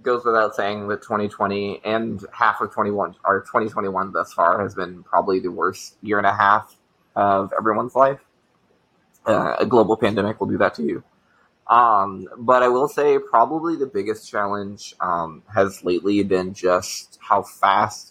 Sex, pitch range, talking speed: male, 95-125 Hz, 165 wpm